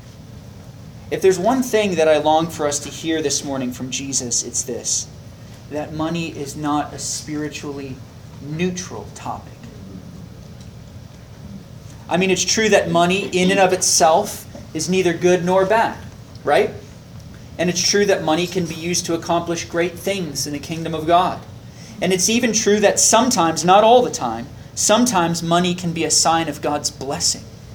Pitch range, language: 130-175 Hz, English